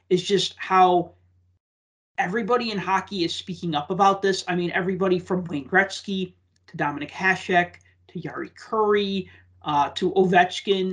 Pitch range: 160-200 Hz